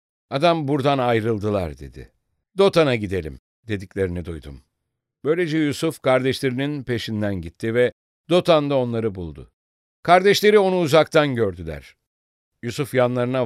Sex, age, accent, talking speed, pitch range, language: male, 60-79, Turkish, 105 wpm, 100-150 Hz, English